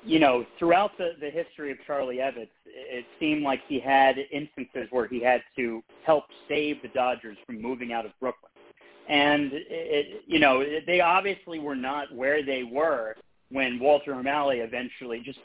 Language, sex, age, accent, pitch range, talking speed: English, male, 40-59, American, 130-170 Hz, 185 wpm